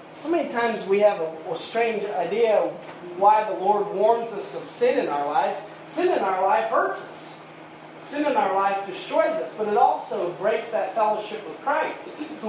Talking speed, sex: 190 wpm, male